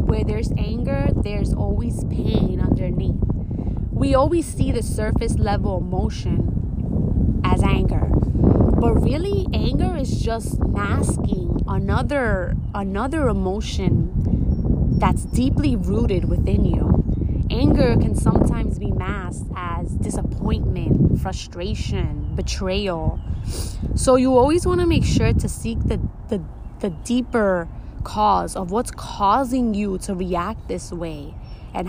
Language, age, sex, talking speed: English, 20-39, female, 115 wpm